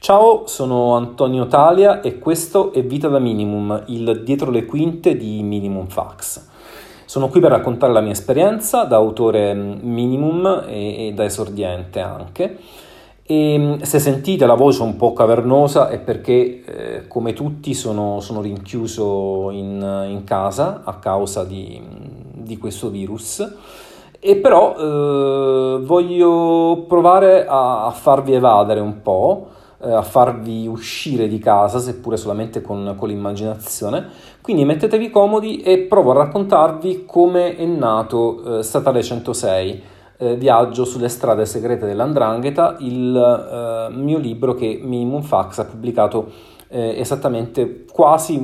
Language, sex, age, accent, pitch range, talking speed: Italian, male, 40-59, native, 110-145 Hz, 135 wpm